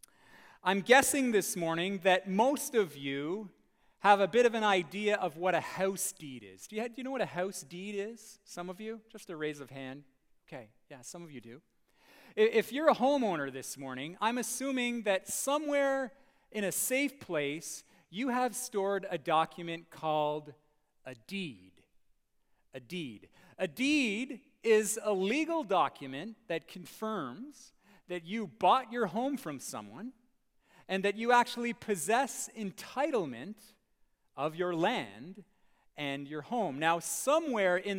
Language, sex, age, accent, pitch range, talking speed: English, male, 40-59, American, 165-235 Hz, 155 wpm